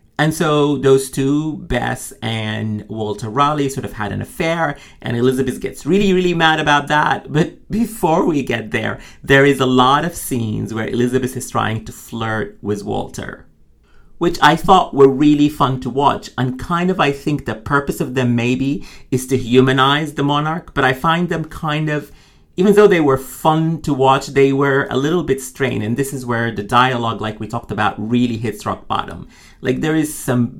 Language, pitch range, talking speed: English, 110-145 Hz, 195 wpm